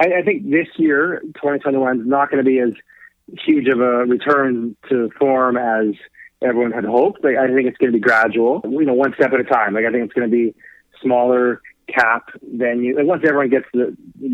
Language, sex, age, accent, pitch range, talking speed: English, male, 30-49, American, 120-140 Hz, 220 wpm